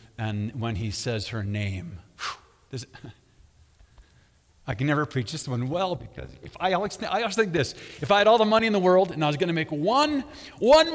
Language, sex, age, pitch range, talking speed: English, male, 50-69, 120-175 Hz, 225 wpm